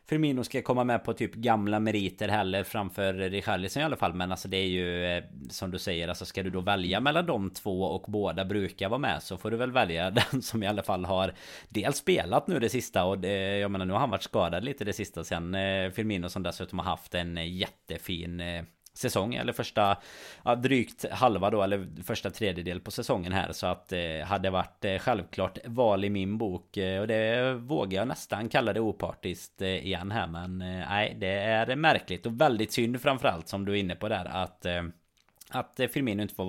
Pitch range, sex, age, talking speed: 90-115 Hz, male, 30-49, 200 wpm